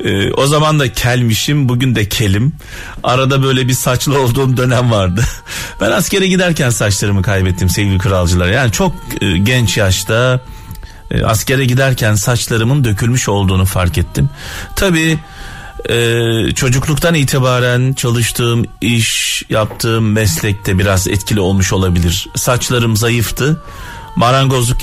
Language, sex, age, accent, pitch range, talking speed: Turkish, male, 40-59, native, 100-140 Hz, 120 wpm